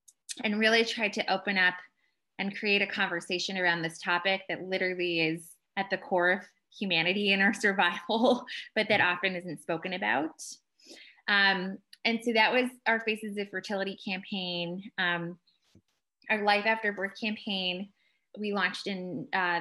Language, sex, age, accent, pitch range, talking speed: English, female, 20-39, American, 175-200 Hz, 155 wpm